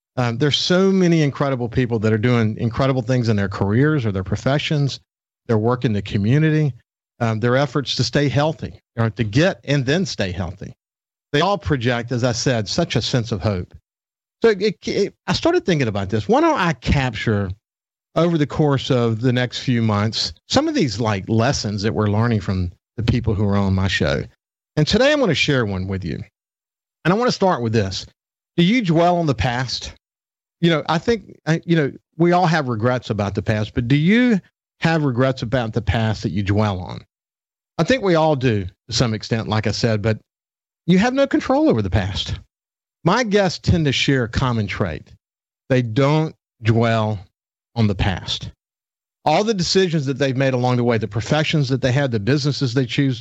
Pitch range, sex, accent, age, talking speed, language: 110-150 Hz, male, American, 50-69, 200 wpm, English